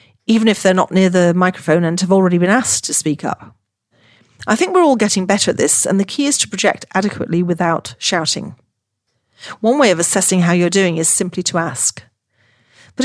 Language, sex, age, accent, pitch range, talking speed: English, female, 40-59, British, 165-205 Hz, 200 wpm